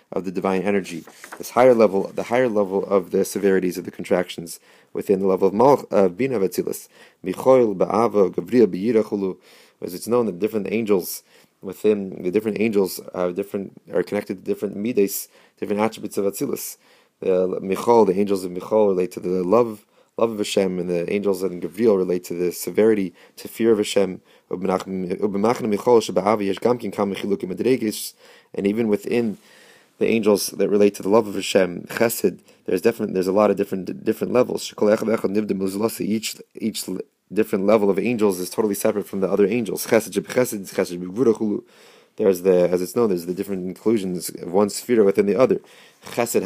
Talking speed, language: 160 wpm, English